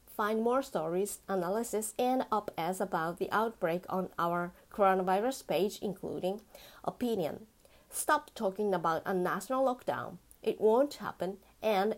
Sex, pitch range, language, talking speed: female, 190-240 Hz, English, 130 wpm